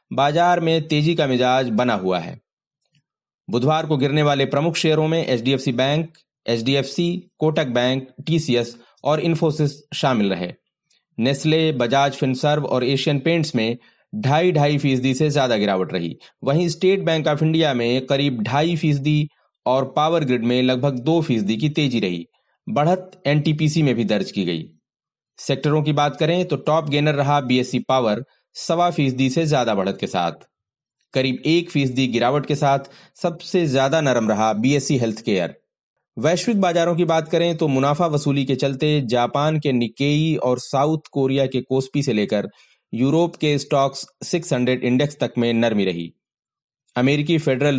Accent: native